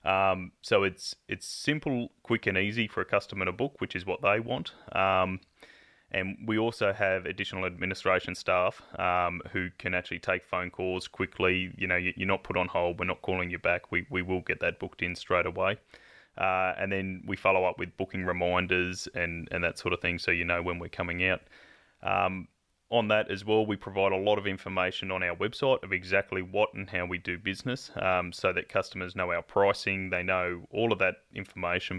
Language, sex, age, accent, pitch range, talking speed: English, male, 20-39, Australian, 90-100 Hz, 210 wpm